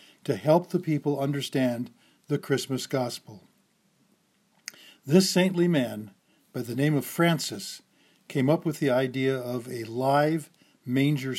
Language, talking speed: English, 130 wpm